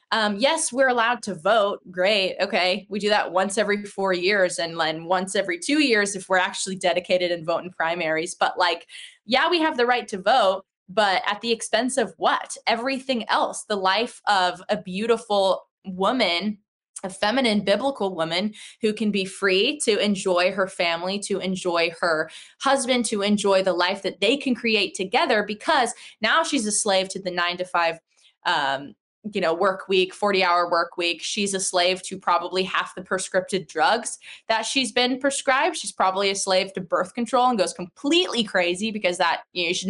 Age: 20-39